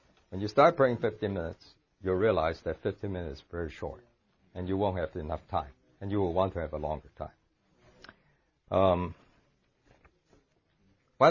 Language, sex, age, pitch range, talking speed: English, male, 60-79, 95-135 Hz, 165 wpm